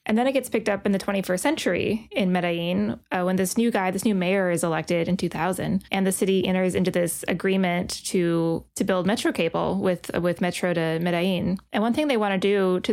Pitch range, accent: 185-215 Hz, American